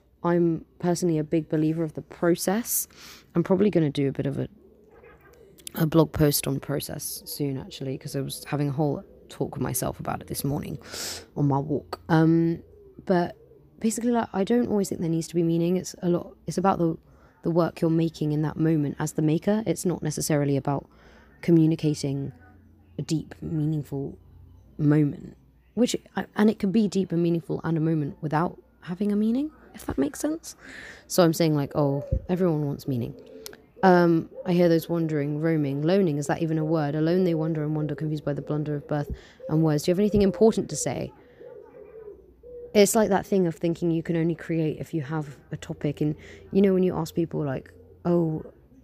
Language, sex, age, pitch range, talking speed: English, female, 20-39, 150-185 Hz, 200 wpm